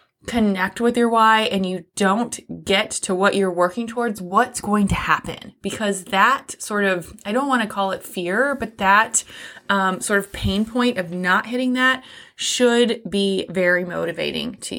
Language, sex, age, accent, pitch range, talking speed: English, female, 20-39, American, 185-230 Hz, 180 wpm